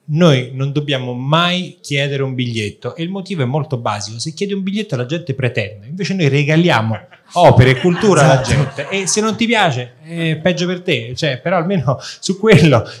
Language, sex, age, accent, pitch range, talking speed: Italian, male, 30-49, native, 120-150 Hz, 195 wpm